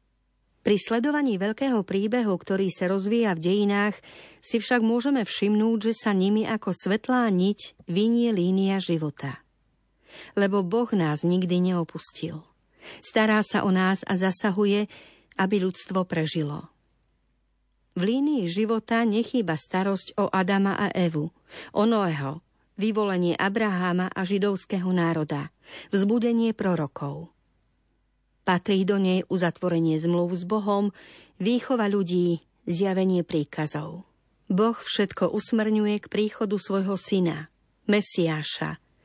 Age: 50-69